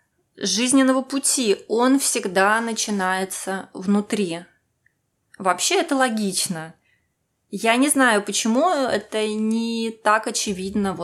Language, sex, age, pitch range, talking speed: Russian, female, 20-39, 195-250 Hz, 90 wpm